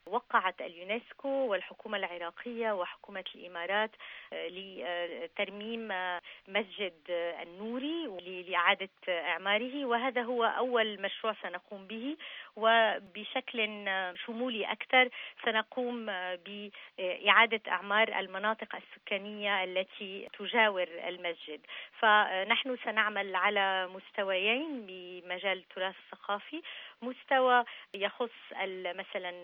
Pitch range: 180-220 Hz